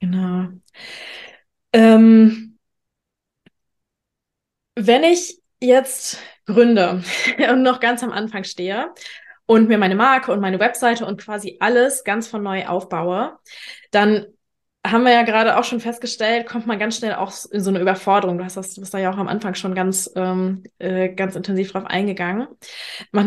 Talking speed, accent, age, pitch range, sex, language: 150 wpm, German, 20-39, 195-230 Hz, female, German